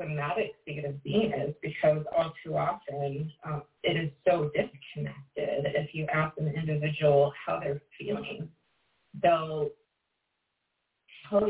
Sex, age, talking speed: female, 30-49, 125 wpm